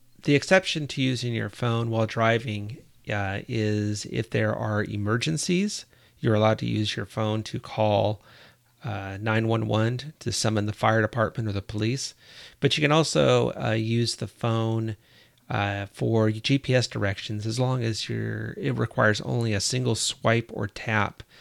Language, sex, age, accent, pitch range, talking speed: English, male, 30-49, American, 110-125 Hz, 155 wpm